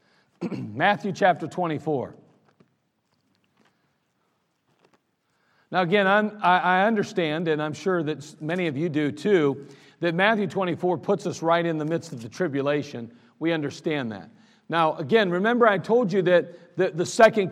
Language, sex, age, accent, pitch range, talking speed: English, male, 50-69, American, 175-220 Hz, 145 wpm